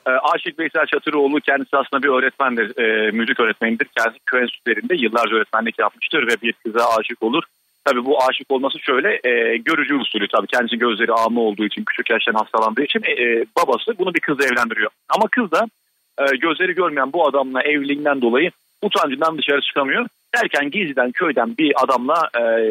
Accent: native